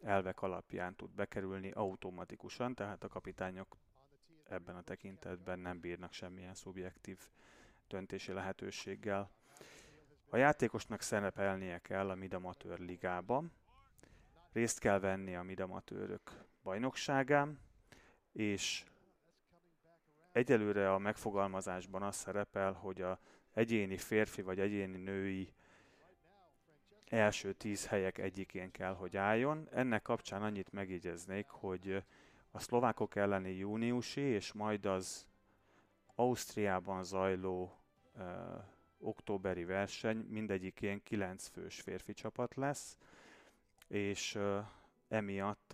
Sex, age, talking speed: male, 30-49, 95 wpm